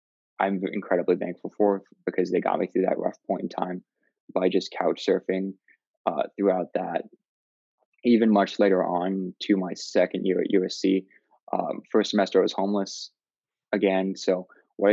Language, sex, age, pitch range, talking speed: English, male, 20-39, 95-105 Hz, 160 wpm